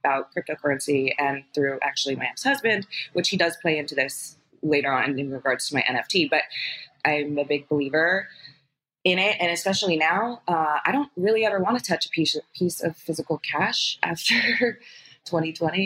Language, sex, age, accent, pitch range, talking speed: English, female, 20-39, American, 155-200 Hz, 170 wpm